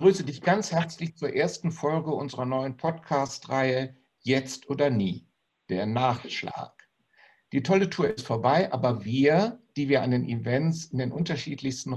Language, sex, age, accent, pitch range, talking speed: German, male, 60-79, German, 115-145 Hz, 155 wpm